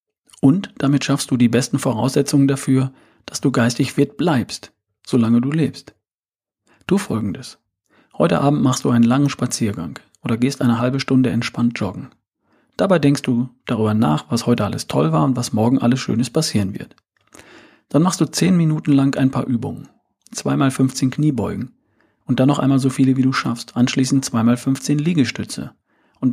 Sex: male